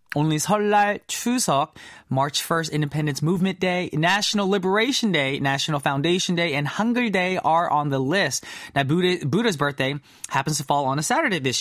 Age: 20-39